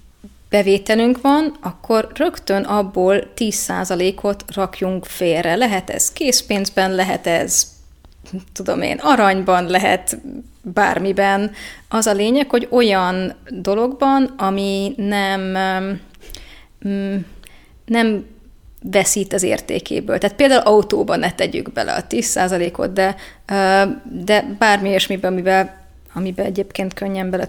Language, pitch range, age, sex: Hungarian, 190-235 Hz, 20-39, female